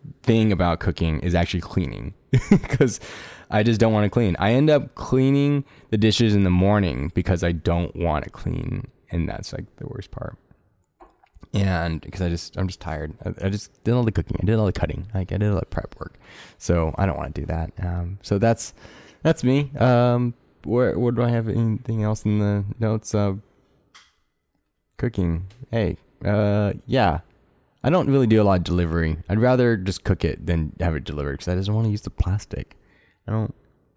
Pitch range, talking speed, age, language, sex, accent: 85-115 Hz, 205 wpm, 20-39, English, male, American